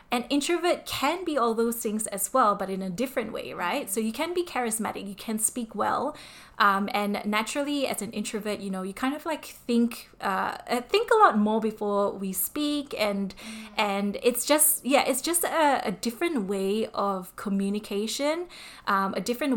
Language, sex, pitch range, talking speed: English, female, 205-260 Hz, 185 wpm